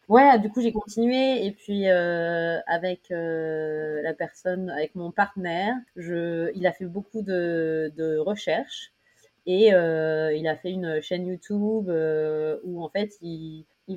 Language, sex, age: French, female, 30-49